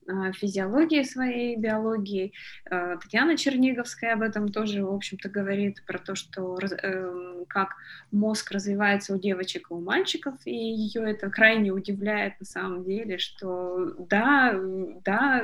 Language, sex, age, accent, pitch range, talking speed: Russian, female, 20-39, native, 200-235 Hz, 130 wpm